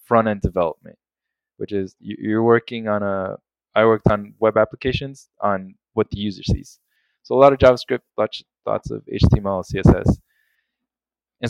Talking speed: 145 wpm